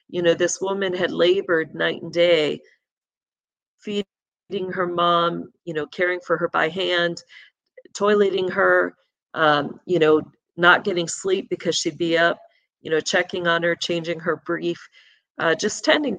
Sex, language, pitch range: female, English, 170-200 Hz